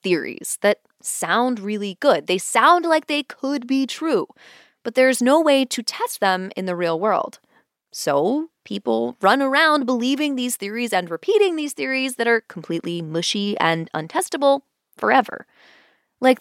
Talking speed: 155 wpm